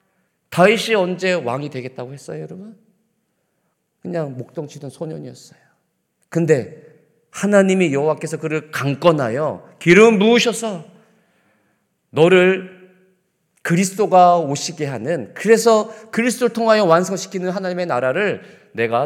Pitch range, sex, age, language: 130-195 Hz, male, 40-59, Korean